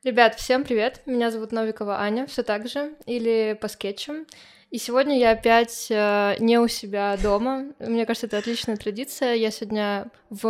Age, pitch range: 20-39, 210-245 Hz